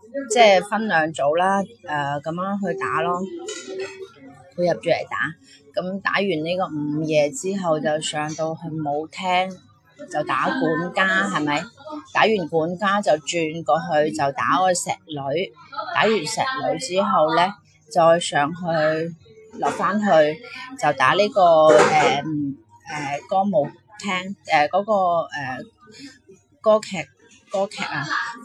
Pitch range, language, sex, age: 155-215 Hz, Chinese, female, 30-49